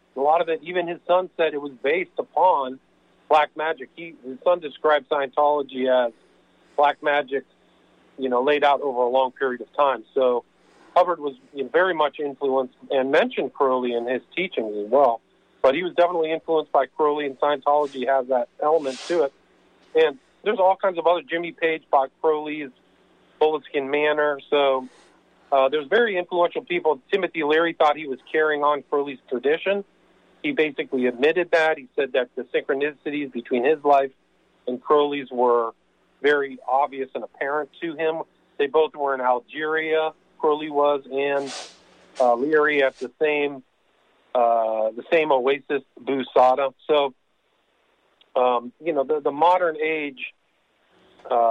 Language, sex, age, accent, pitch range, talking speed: English, male, 40-59, American, 135-160 Hz, 155 wpm